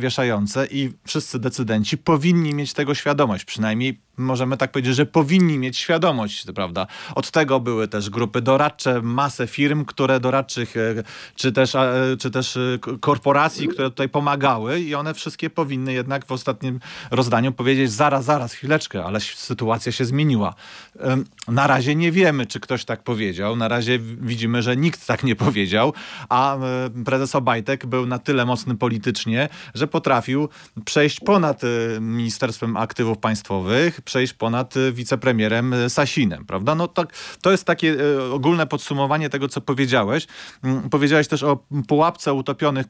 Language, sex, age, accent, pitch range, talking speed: Polish, male, 40-59, native, 120-145 Hz, 145 wpm